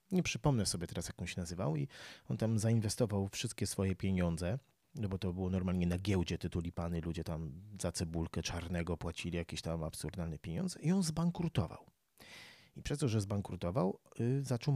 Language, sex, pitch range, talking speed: Polish, male, 95-145 Hz, 175 wpm